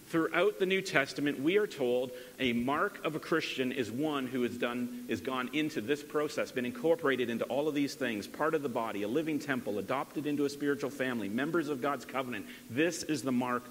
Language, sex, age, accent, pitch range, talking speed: English, male, 40-59, American, 125-155 Hz, 215 wpm